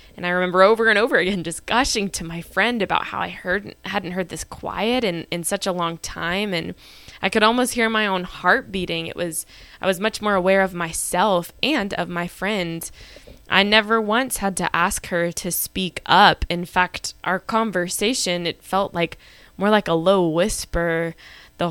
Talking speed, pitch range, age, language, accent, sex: 195 wpm, 170-205 Hz, 10-29, English, American, female